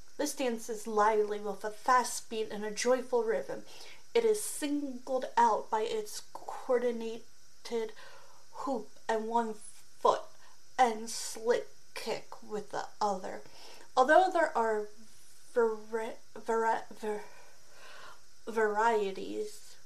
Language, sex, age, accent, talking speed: English, female, 30-49, American, 100 wpm